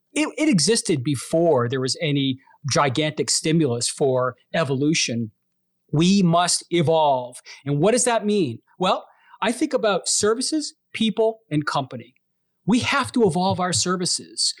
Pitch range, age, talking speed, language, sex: 160-215 Hz, 40-59, 135 wpm, English, male